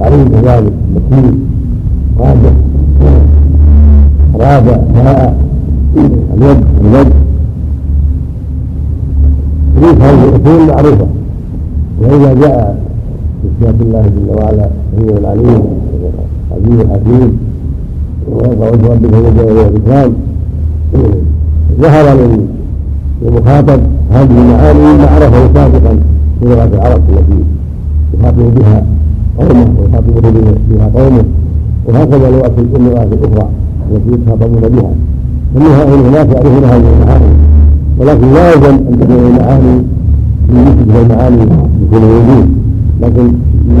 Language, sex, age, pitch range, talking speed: Arabic, male, 60-79, 75-120 Hz, 95 wpm